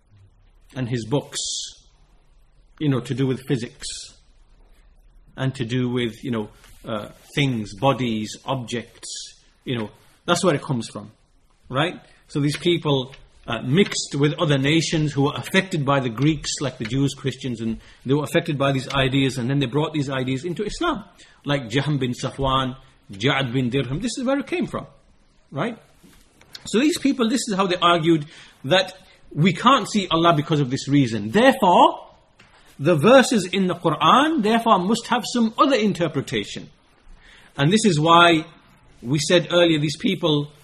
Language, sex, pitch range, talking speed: English, male, 130-180 Hz, 165 wpm